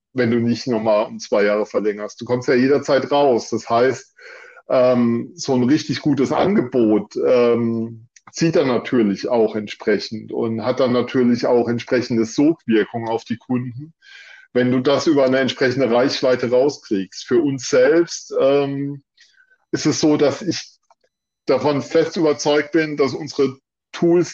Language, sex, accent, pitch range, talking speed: German, male, German, 125-150 Hz, 150 wpm